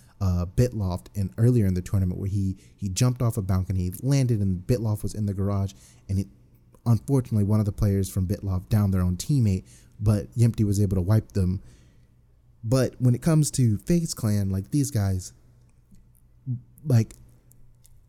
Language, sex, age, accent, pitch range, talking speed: English, male, 30-49, American, 95-120 Hz, 180 wpm